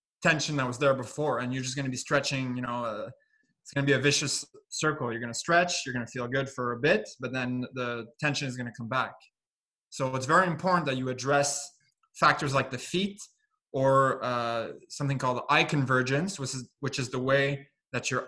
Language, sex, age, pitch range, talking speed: English, male, 20-39, 125-150 Hz, 225 wpm